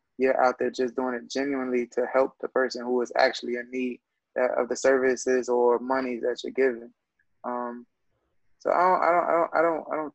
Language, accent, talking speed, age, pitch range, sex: English, American, 205 wpm, 20-39, 120-130 Hz, male